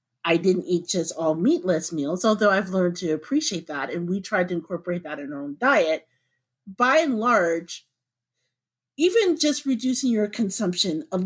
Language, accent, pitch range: English, American, 165-230 Hz